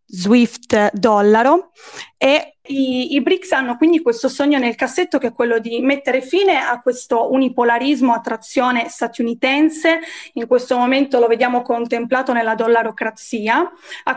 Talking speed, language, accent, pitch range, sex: 135 wpm, Italian, native, 235-295 Hz, female